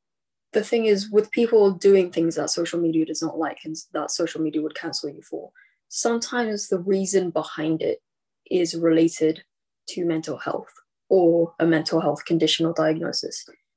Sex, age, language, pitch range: female, 20-39, English, 160-195 Hz